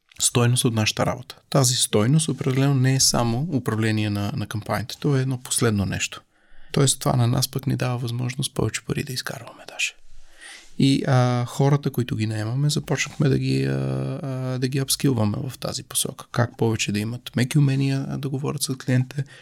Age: 30-49